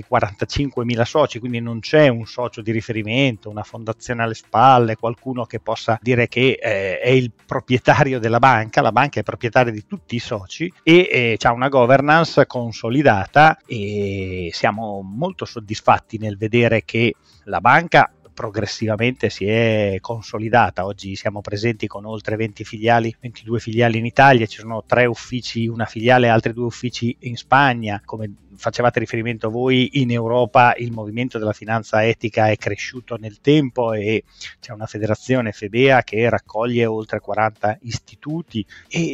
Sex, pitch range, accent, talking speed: male, 110-125 Hz, native, 155 wpm